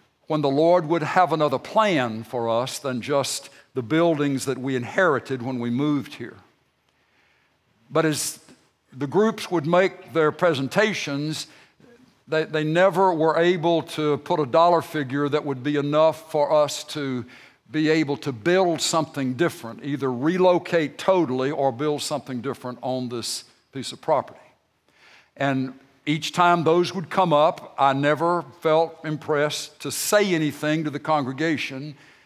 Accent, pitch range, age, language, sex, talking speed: American, 135-160 Hz, 60-79, English, male, 145 wpm